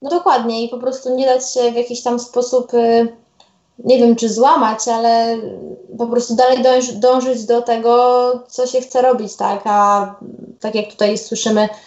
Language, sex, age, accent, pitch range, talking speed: Polish, female, 20-39, native, 205-240 Hz, 165 wpm